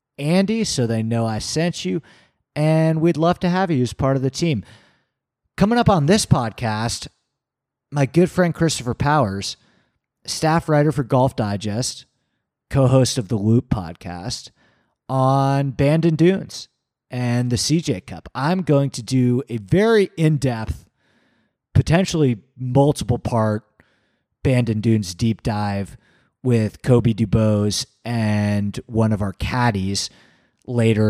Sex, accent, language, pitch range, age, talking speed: male, American, English, 115-155 Hz, 30-49, 135 wpm